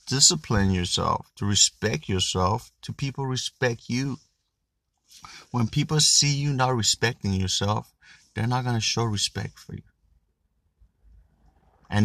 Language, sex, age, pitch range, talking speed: English, male, 30-49, 90-110 Hz, 125 wpm